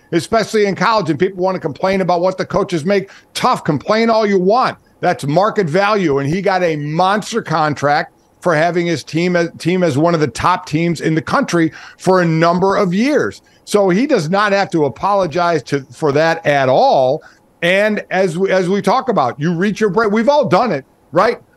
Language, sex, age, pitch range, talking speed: English, male, 50-69, 160-200 Hz, 210 wpm